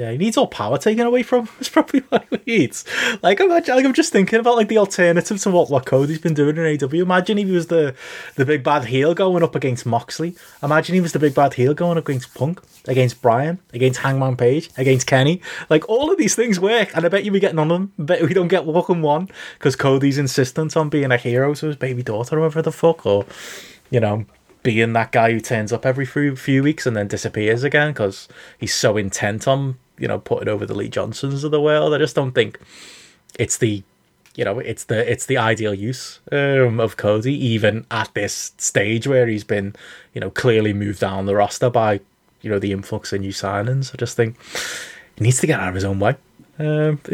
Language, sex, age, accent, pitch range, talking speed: English, male, 20-39, British, 115-165 Hz, 235 wpm